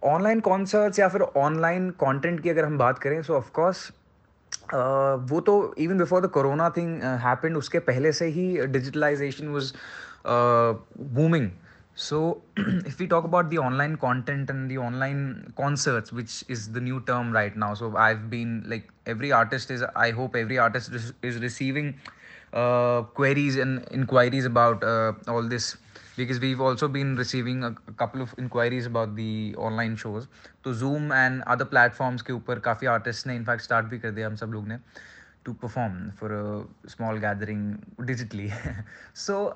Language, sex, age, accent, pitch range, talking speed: Hindi, male, 20-39, native, 115-145 Hz, 155 wpm